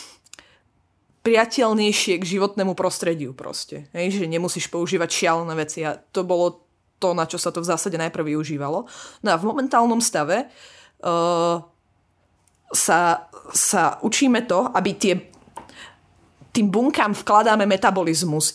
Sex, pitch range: female, 170-205 Hz